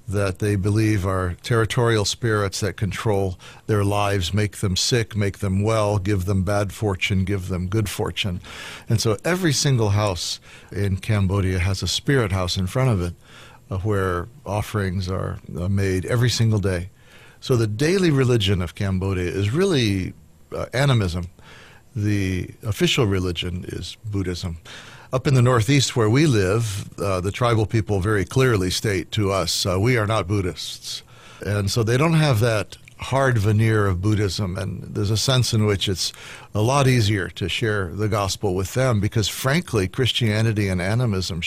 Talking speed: 165 wpm